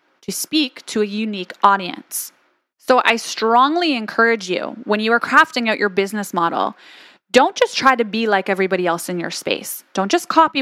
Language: English